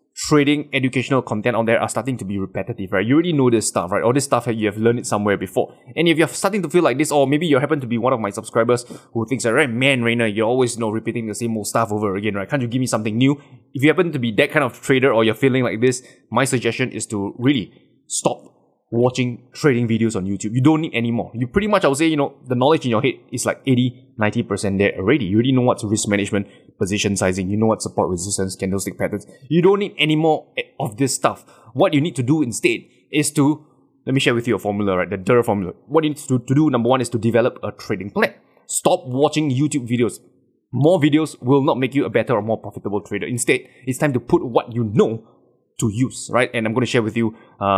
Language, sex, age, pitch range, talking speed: English, male, 20-39, 110-135 Hz, 260 wpm